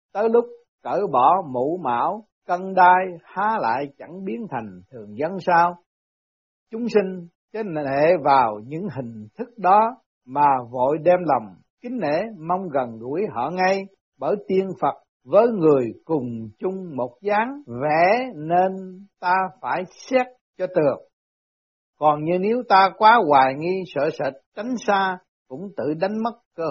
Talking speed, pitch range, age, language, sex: 155 wpm, 150-200 Hz, 60-79, Vietnamese, male